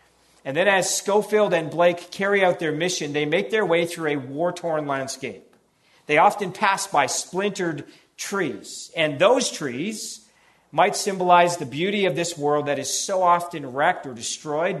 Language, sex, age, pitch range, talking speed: English, male, 40-59, 140-180 Hz, 165 wpm